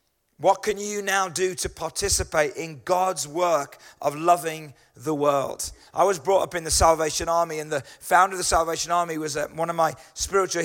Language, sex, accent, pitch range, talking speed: English, male, British, 160-190 Hz, 190 wpm